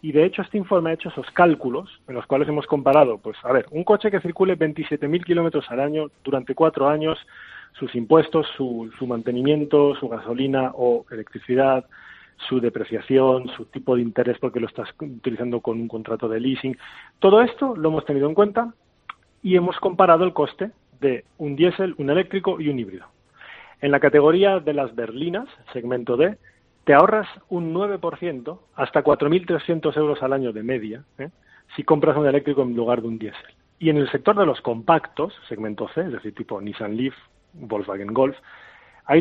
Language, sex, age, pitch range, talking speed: Spanish, male, 40-59, 125-170 Hz, 180 wpm